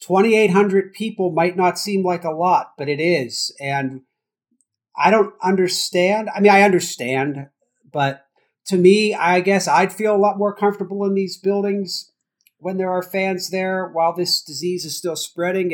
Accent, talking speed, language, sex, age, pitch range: American, 175 wpm, English, male, 40-59, 160-205 Hz